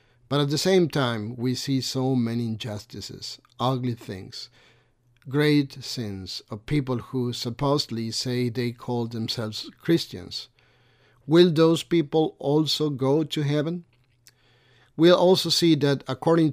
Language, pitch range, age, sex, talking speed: English, 120-140 Hz, 50-69, male, 130 wpm